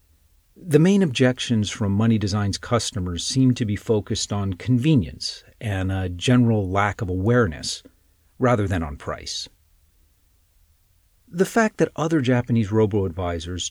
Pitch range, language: 90-125 Hz, English